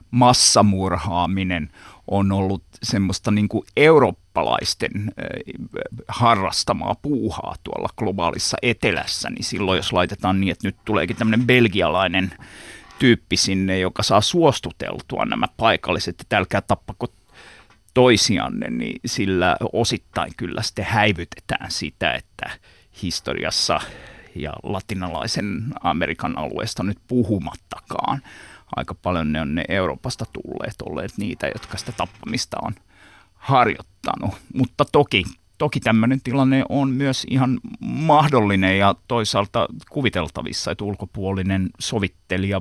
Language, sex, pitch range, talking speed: Finnish, male, 95-115 Hz, 110 wpm